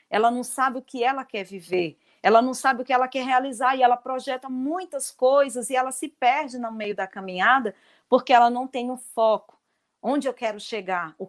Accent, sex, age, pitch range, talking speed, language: Brazilian, female, 40-59, 215-265 Hz, 215 wpm, Portuguese